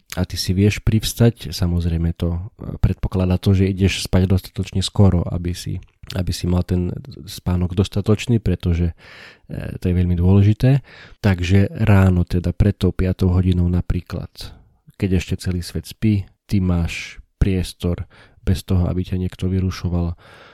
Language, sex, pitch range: Slovak, male, 90-105 Hz